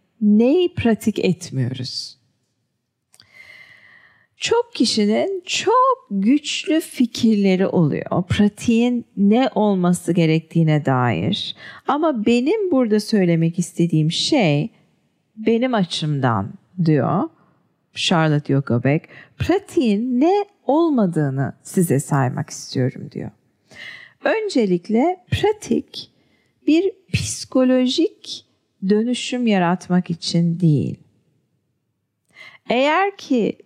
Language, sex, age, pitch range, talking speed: English, female, 40-59, 165-260 Hz, 75 wpm